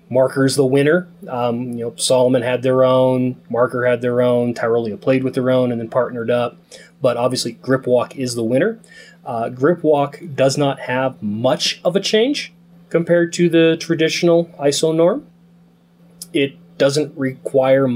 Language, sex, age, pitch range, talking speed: English, male, 20-39, 125-170 Hz, 155 wpm